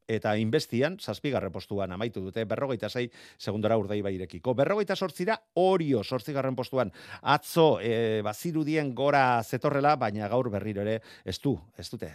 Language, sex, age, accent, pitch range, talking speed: Spanish, male, 40-59, Spanish, 95-130 Hz, 130 wpm